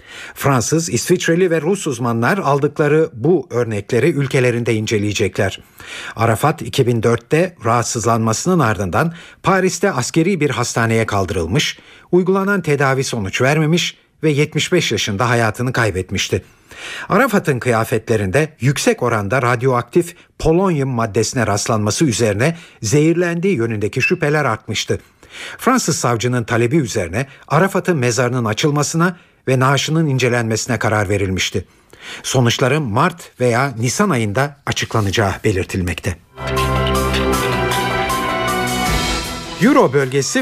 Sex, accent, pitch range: male, native, 115-165 Hz